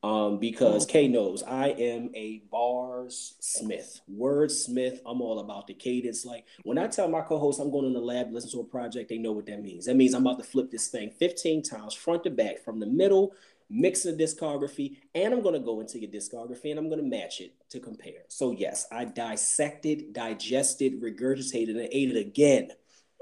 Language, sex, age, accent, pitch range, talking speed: English, male, 30-49, American, 110-145 Hz, 205 wpm